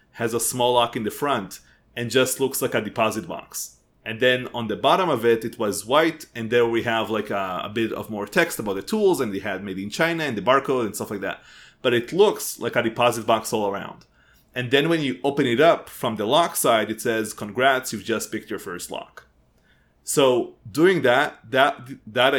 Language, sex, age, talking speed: English, male, 30-49, 230 wpm